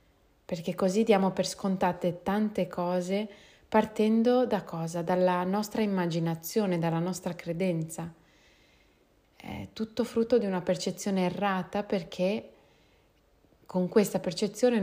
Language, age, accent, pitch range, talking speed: Italian, 30-49, native, 165-190 Hz, 110 wpm